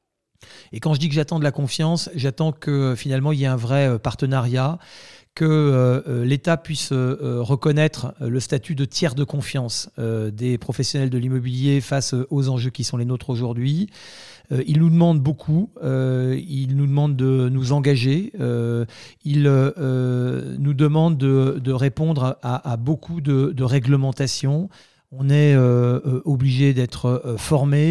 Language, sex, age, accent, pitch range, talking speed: French, male, 40-59, French, 125-150 Hz, 140 wpm